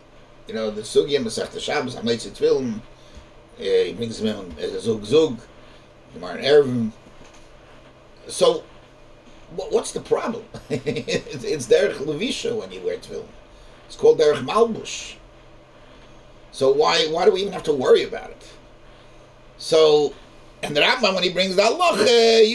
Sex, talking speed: male, 145 wpm